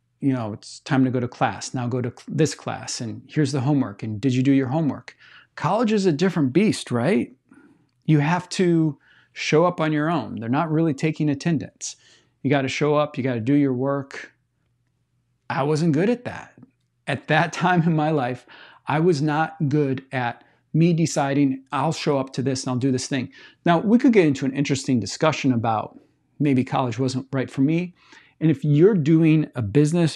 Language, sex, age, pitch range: English, male, 40-59, 130-160 Hz